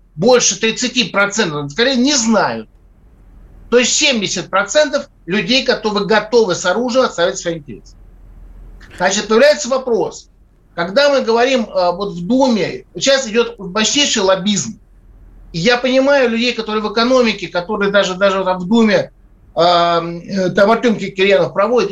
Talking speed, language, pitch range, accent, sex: 120 wpm, Russian, 180-245 Hz, native, male